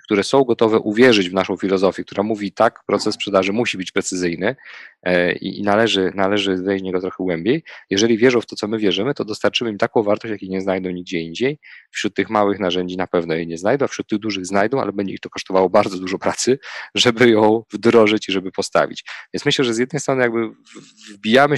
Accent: native